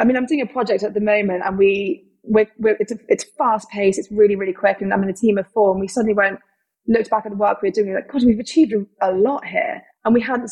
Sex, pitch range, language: female, 195-220 Hz, English